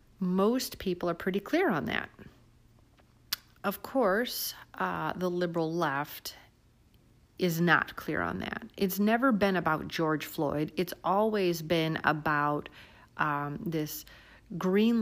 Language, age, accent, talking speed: English, 30-49, American, 125 wpm